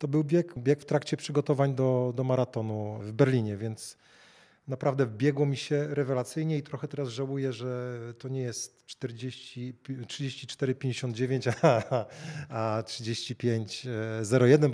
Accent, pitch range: native, 115-140 Hz